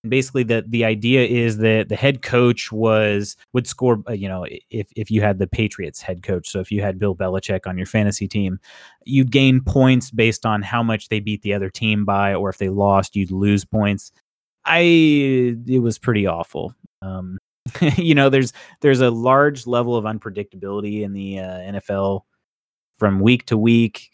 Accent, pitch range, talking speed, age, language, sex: American, 100-130 Hz, 190 wpm, 30-49, English, male